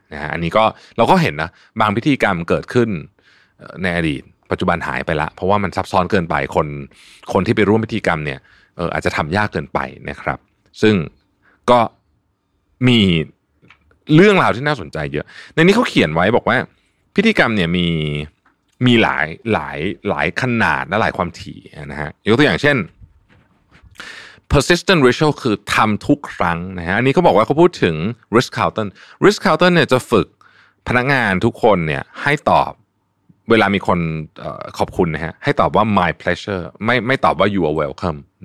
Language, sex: Thai, male